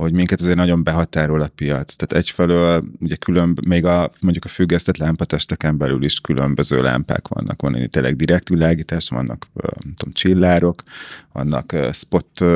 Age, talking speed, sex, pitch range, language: 30-49, 155 wpm, male, 80-90 Hz, Hungarian